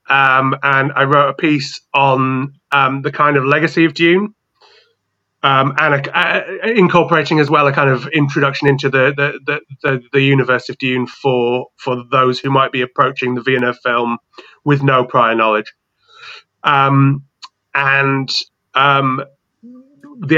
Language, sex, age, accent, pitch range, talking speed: English, male, 30-49, British, 130-150 Hz, 150 wpm